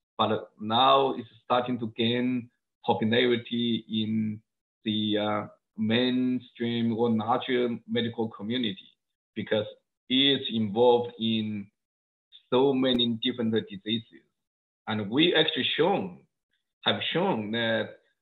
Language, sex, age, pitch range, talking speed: English, male, 50-69, 115-140 Hz, 95 wpm